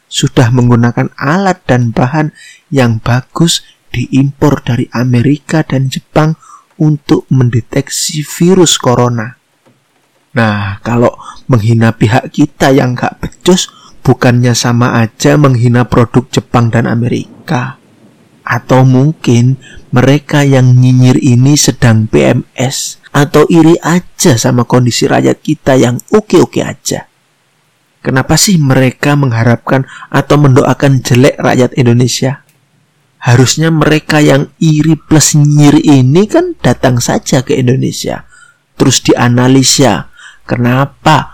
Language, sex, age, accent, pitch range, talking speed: Indonesian, male, 30-49, native, 125-150 Hz, 105 wpm